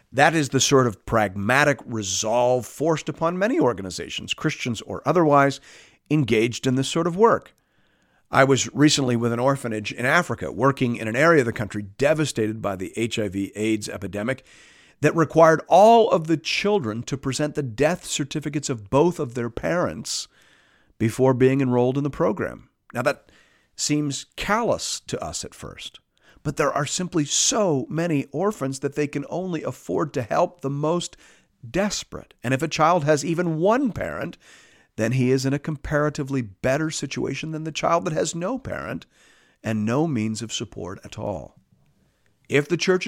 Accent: American